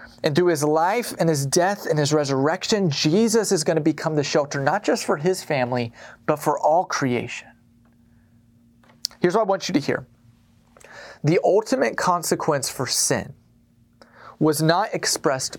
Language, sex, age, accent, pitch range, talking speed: English, male, 30-49, American, 125-180 Hz, 160 wpm